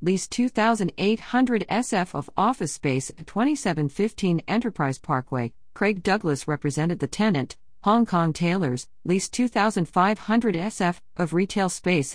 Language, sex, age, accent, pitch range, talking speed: English, female, 50-69, American, 145-205 Hz, 120 wpm